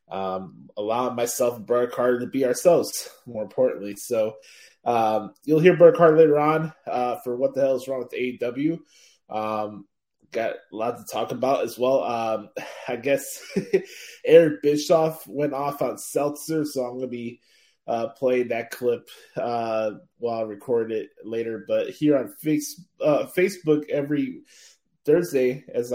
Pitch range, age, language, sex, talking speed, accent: 120-155 Hz, 20-39, English, male, 155 wpm, American